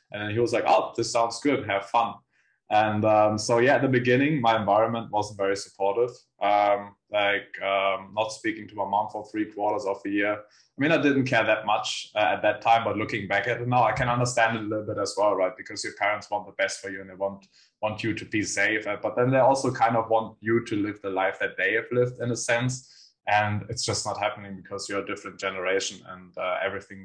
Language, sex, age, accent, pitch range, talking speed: English, male, 20-39, German, 95-115 Hz, 245 wpm